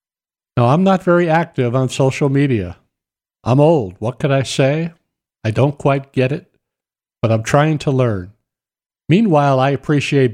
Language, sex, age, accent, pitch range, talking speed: English, male, 50-69, American, 115-140 Hz, 155 wpm